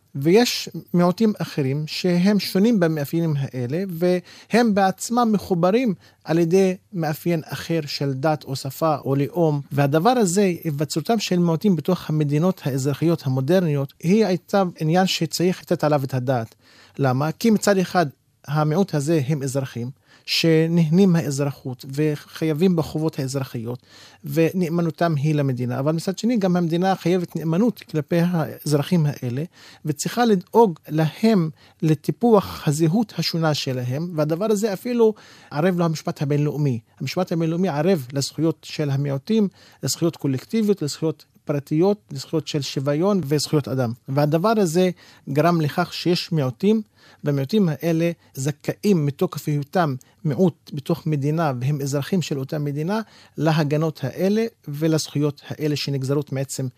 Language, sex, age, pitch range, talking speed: Hebrew, male, 40-59, 140-180 Hz, 125 wpm